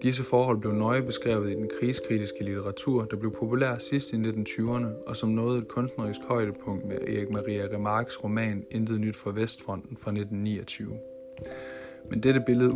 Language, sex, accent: Danish, male, native